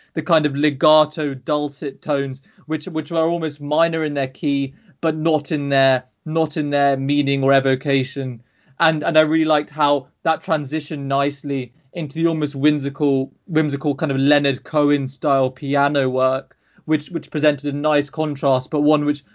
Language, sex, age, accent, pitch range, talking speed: English, male, 20-39, British, 140-160 Hz, 165 wpm